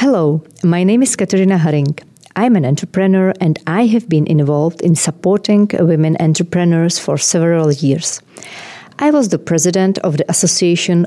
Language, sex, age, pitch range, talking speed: Czech, female, 40-59, 155-195 Hz, 150 wpm